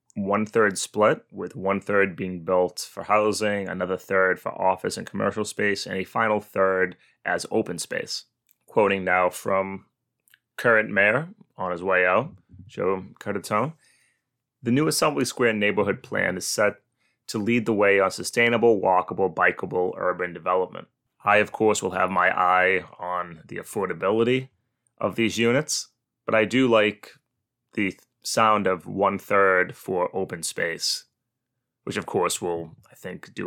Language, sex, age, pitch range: English, male, 20-39, 90-115 Hz